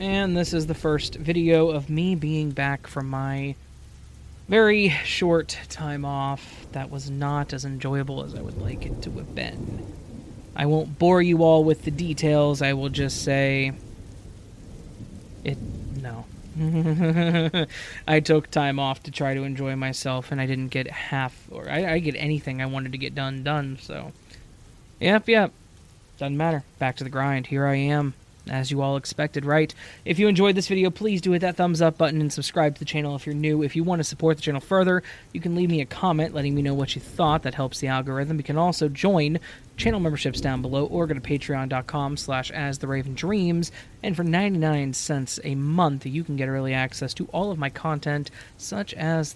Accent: American